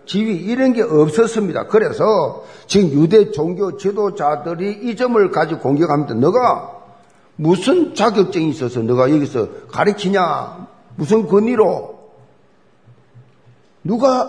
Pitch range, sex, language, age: 150-210 Hz, male, Korean, 50-69